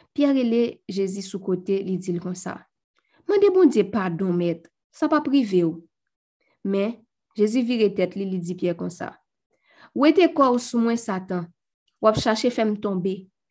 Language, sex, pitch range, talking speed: French, female, 185-235 Hz, 190 wpm